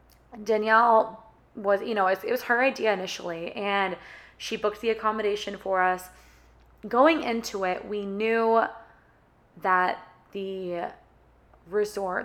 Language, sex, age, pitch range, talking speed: English, female, 20-39, 185-225 Hz, 120 wpm